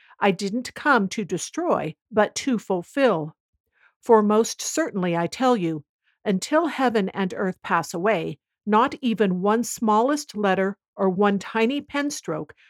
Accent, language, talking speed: American, English, 140 wpm